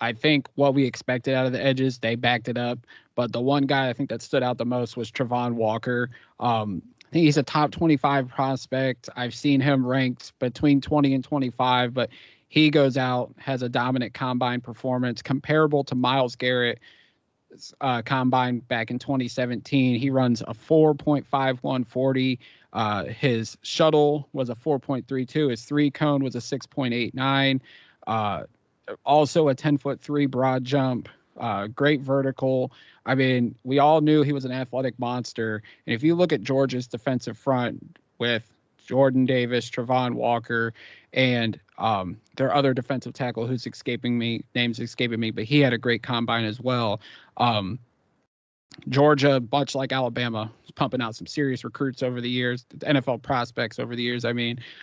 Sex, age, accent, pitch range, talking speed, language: male, 30-49, American, 120-140 Hz, 165 wpm, English